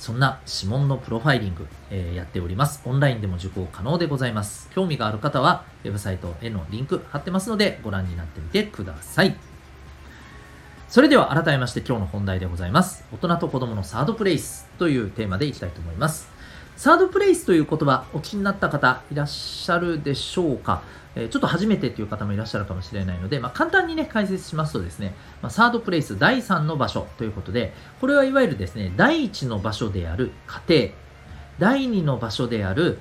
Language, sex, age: Japanese, male, 40-59